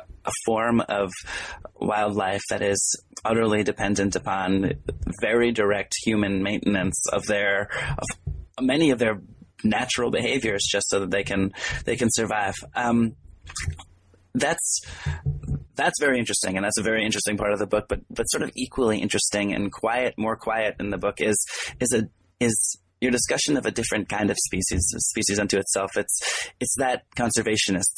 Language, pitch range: English, 100-115 Hz